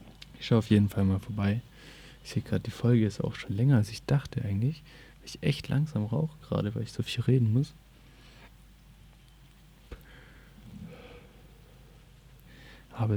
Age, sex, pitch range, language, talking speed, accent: 20-39, male, 105-135 Hz, German, 150 wpm, German